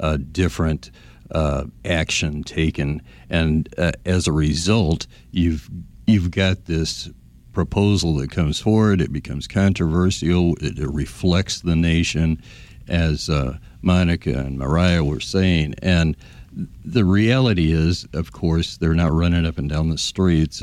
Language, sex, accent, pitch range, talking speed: English, male, American, 75-90 Hz, 145 wpm